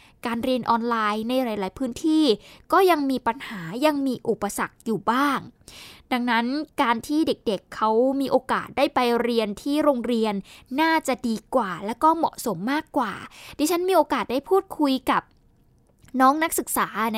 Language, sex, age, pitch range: Thai, female, 10-29, 225-300 Hz